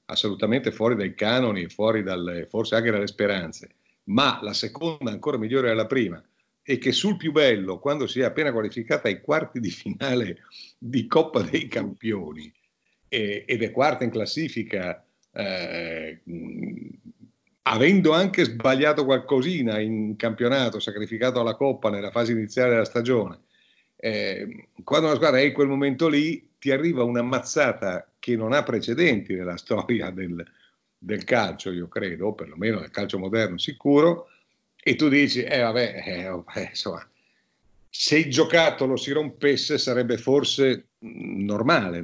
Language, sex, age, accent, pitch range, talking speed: Italian, male, 50-69, native, 100-140 Hz, 145 wpm